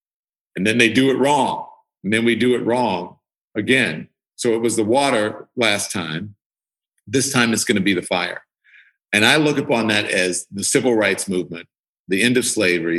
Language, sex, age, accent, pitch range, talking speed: English, male, 50-69, American, 85-110 Hz, 190 wpm